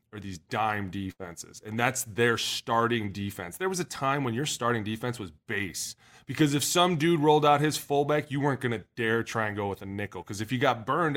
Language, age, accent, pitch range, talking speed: English, 20-39, American, 110-135 Hz, 225 wpm